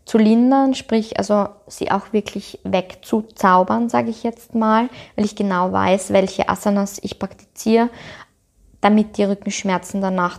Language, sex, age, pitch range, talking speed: German, female, 20-39, 190-225 Hz, 140 wpm